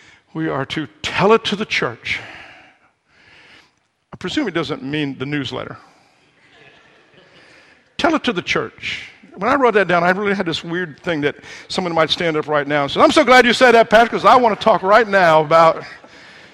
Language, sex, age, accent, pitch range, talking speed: English, male, 50-69, American, 150-225 Hz, 200 wpm